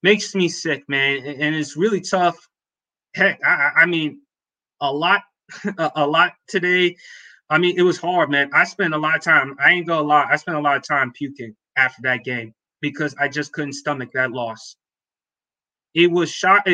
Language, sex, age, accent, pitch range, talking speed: English, male, 20-39, American, 140-165 Hz, 195 wpm